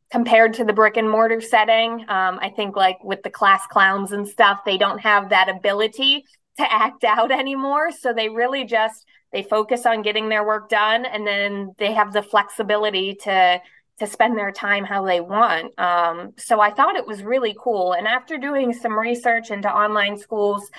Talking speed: 195 wpm